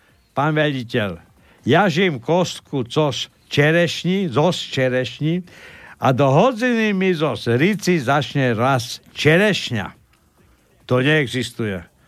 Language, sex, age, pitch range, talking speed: Slovak, male, 60-79, 115-175 Hz, 90 wpm